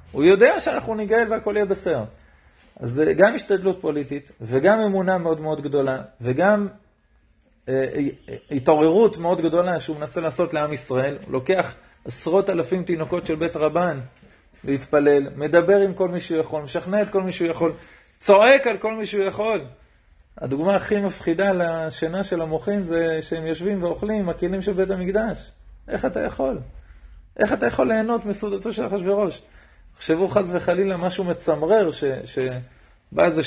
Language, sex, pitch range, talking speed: Hebrew, male, 160-200 Hz, 155 wpm